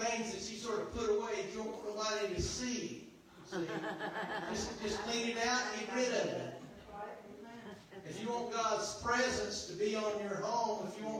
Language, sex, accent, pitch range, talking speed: English, male, American, 160-230 Hz, 195 wpm